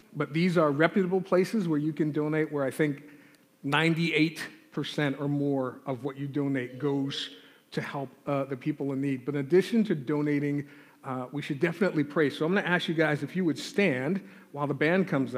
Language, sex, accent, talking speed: English, male, American, 205 wpm